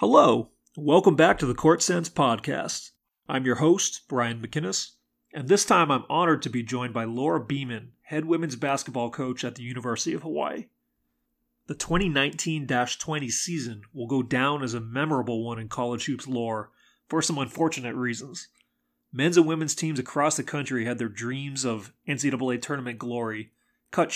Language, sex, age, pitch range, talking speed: English, male, 30-49, 115-145 Hz, 165 wpm